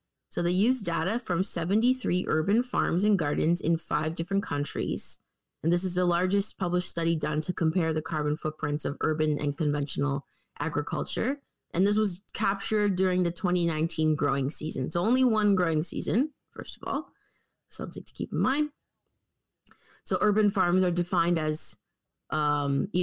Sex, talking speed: female, 160 wpm